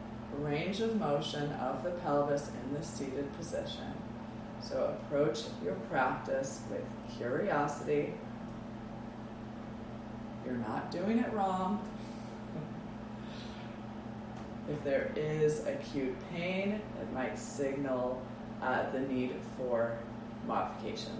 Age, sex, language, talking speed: 20-39, female, English, 95 wpm